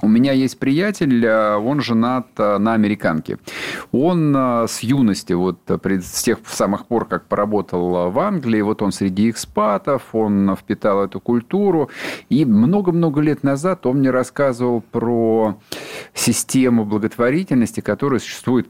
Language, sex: Russian, male